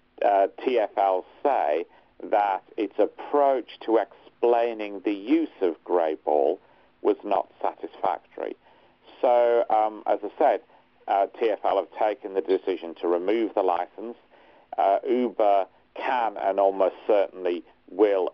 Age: 50-69